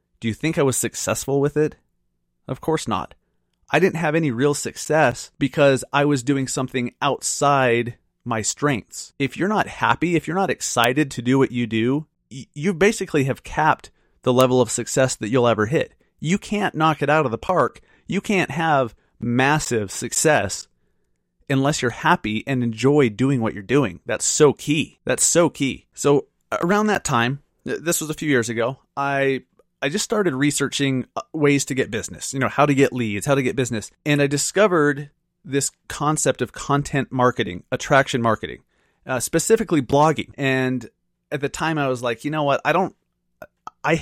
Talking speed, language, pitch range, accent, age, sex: 180 wpm, English, 115-145 Hz, American, 30-49, male